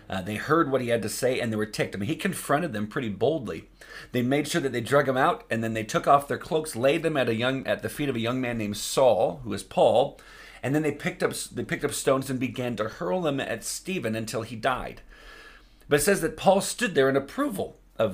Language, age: English, 40-59